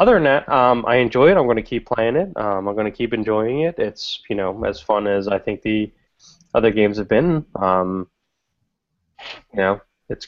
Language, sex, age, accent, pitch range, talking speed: English, male, 20-39, American, 105-125 Hz, 215 wpm